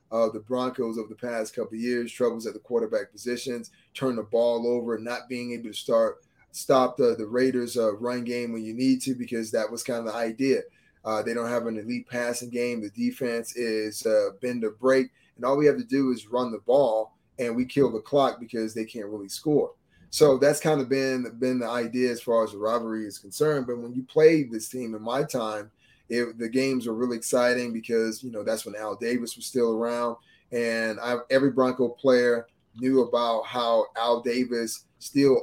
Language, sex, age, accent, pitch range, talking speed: English, male, 30-49, American, 115-135 Hz, 210 wpm